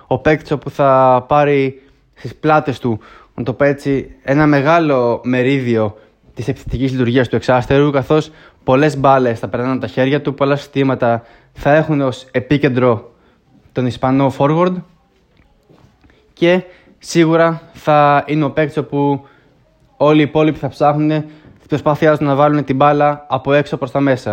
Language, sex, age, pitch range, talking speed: Greek, male, 20-39, 130-155 Hz, 145 wpm